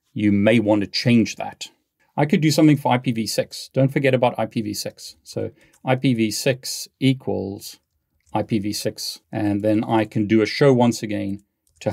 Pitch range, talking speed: 105-125 Hz, 150 wpm